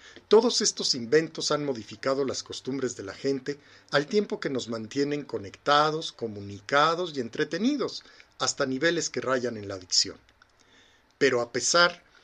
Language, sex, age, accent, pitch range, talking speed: Spanish, male, 50-69, Mexican, 120-170 Hz, 140 wpm